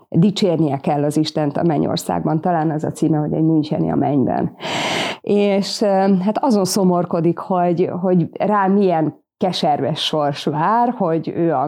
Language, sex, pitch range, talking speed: Hungarian, female, 165-195 Hz, 145 wpm